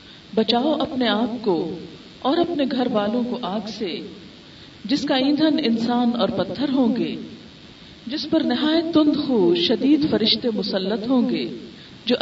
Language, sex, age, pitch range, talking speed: Urdu, female, 40-59, 215-285 Hz, 145 wpm